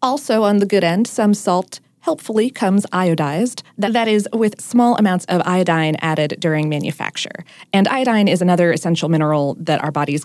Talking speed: 170 wpm